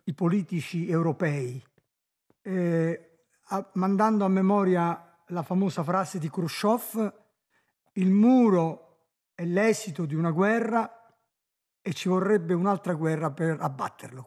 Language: Italian